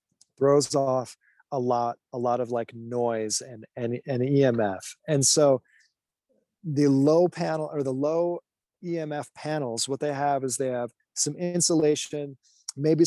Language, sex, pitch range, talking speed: English, male, 125-150 Hz, 145 wpm